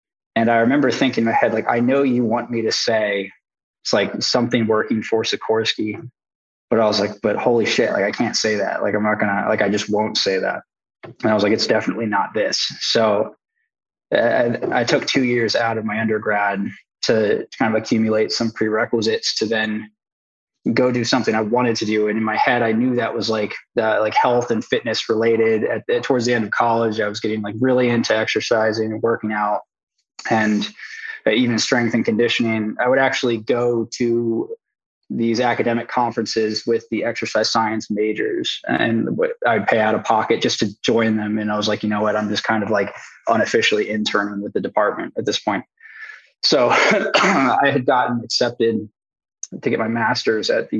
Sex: male